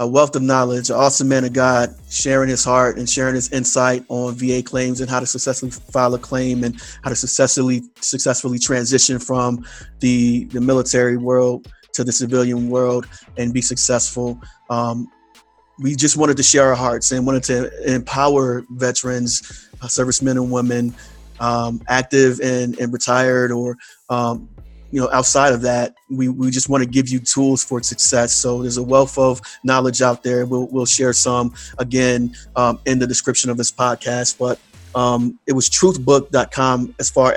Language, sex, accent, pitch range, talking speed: English, male, American, 120-130 Hz, 175 wpm